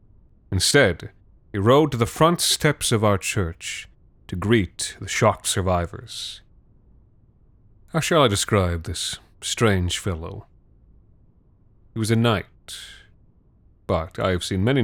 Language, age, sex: English, 30-49, male